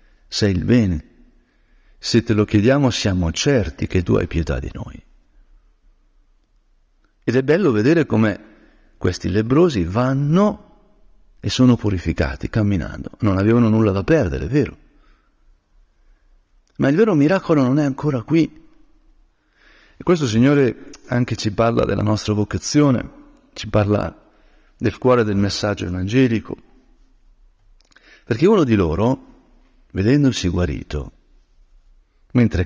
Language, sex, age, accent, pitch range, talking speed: Italian, male, 50-69, native, 100-130 Hz, 120 wpm